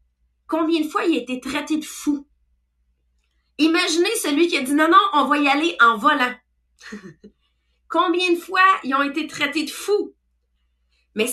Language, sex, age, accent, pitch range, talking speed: English, female, 30-49, Canadian, 230-300 Hz, 175 wpm